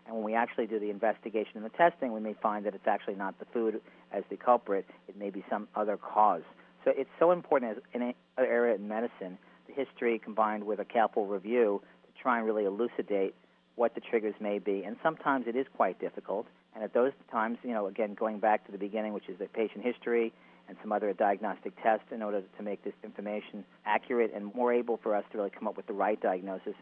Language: English